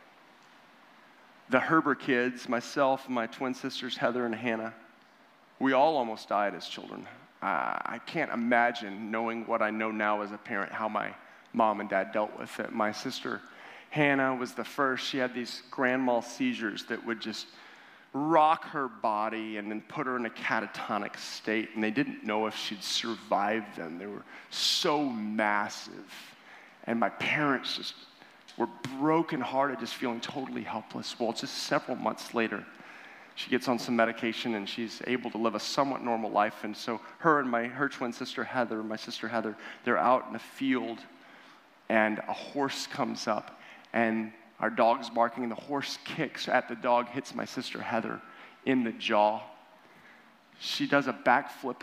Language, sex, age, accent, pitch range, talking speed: English, male, 40-59, American, 110-130 Hz, 170 wpm